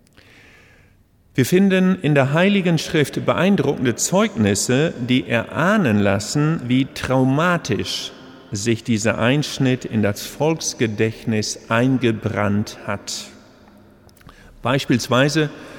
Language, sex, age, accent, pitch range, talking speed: German, male, 50-69, German, 115-145 Hz, 85 wpm